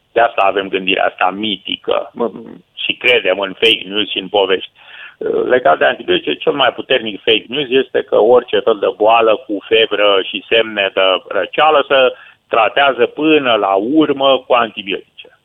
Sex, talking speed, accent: male, 165 wpm, native